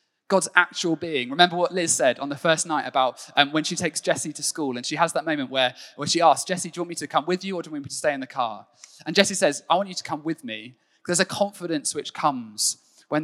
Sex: male